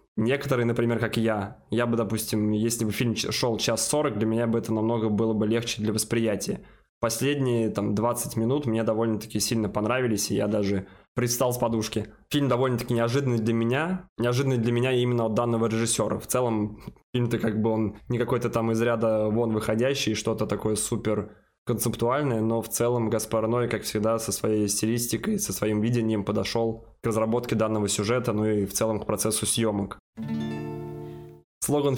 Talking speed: 170 wpm